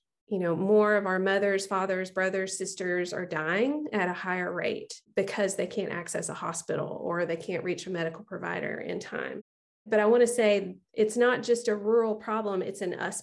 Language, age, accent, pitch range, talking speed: English, 30-49, American, 180-215 Hz, 200 wpm